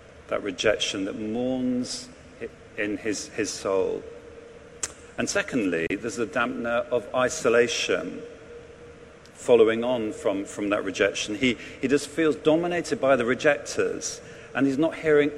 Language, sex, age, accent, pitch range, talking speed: English, male, 50-69, British, 120-165 Hz, 130 wpm